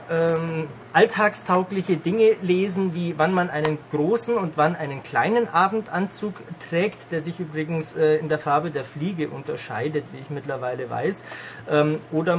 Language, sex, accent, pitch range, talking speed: German, male, German, 150-180 Hz, 135 wpm